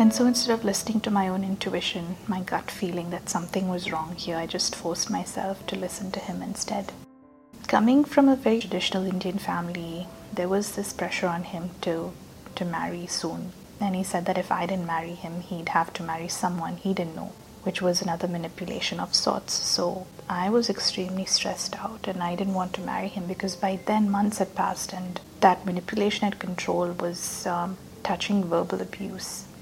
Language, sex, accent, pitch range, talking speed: English, female, Indian, 180-205 Hz, 195 wpm